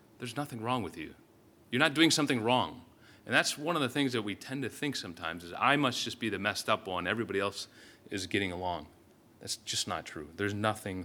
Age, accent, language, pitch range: 30-49, American, English, 105-135 Hz